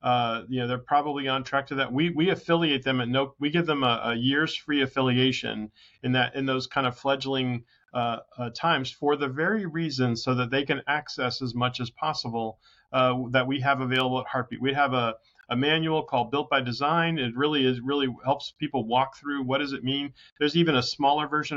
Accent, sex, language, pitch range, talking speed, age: American, male, English, 125-145 Hz, 220 wpm, 40-59